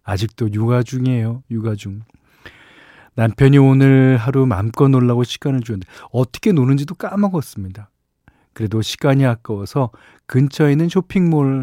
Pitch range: 105-140 Hz